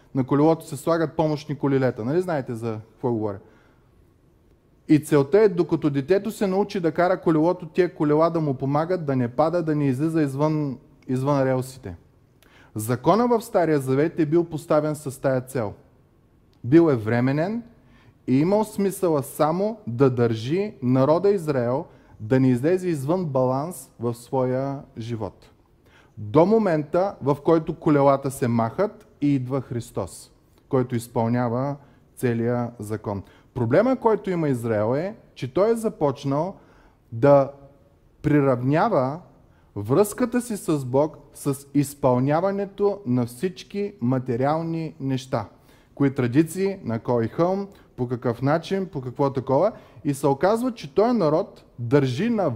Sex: male